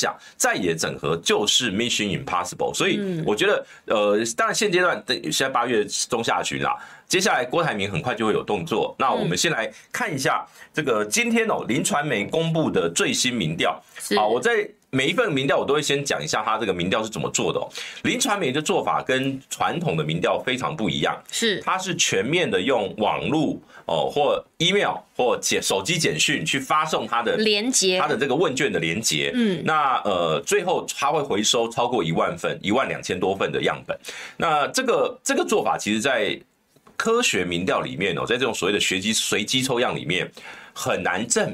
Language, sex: Chinese, male